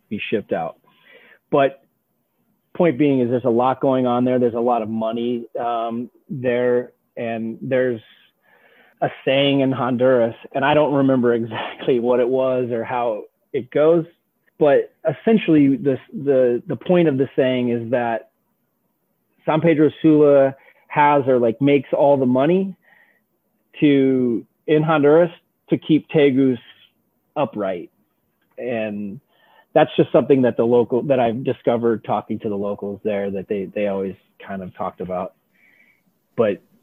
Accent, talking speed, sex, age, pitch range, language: American, 145 wpm, male, 30-49, 110-140 Hz, English